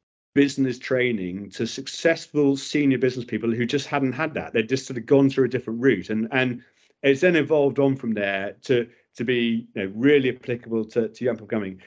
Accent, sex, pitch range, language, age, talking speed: British, male, 120-140 Hz, English, 40-59, 205 wpm